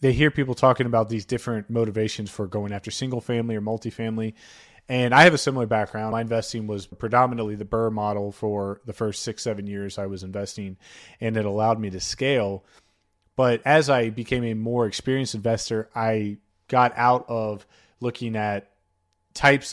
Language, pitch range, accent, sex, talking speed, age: English, 105-120 Hz, American, male, 175 wpm, 30-49